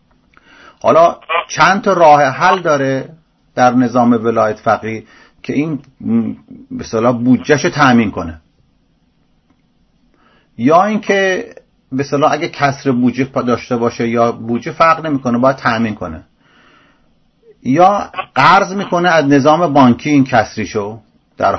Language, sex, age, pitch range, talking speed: English, male, 40-59, 110-150 Hz, 120 wpm